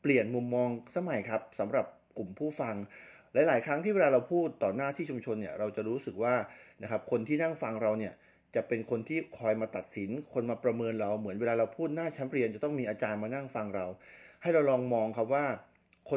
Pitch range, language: 105-140 Hz, Thai